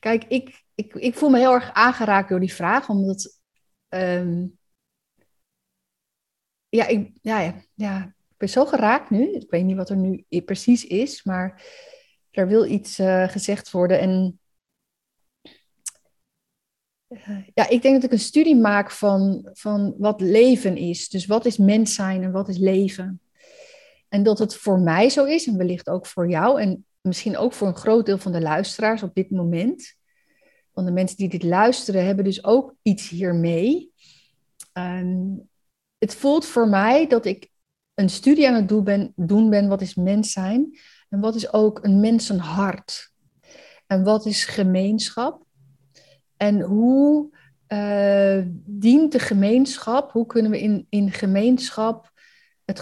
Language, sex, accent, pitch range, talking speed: Dutch, female, Dutch, 190-235 Hz, 160 wpm